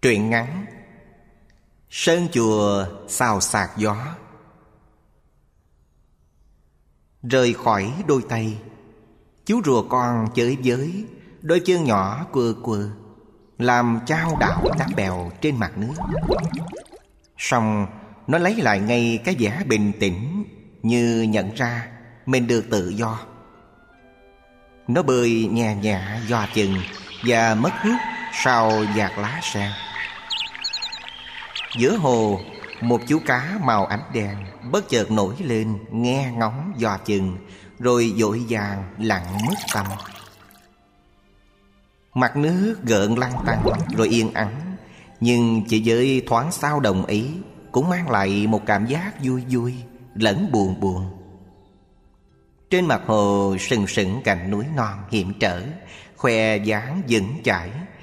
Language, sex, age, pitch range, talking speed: Vietnamese, male, 20-39, 100-125 Hz, 125 wpm